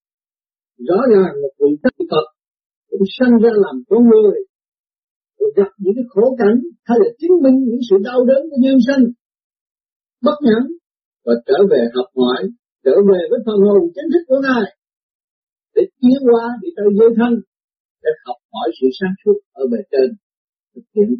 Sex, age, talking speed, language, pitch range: male, 50-69, 95 wpm, Vietnamese, 200-290 Hz